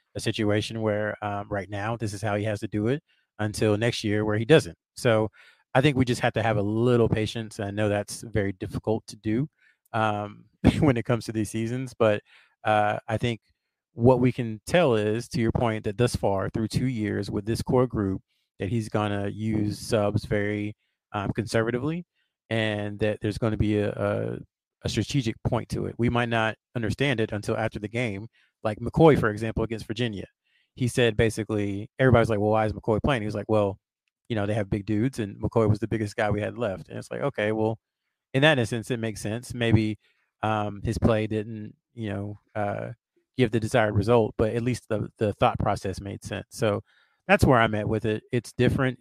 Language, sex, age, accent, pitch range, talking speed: English, male, 30-49, American, 105-115 Hz, 210 wpm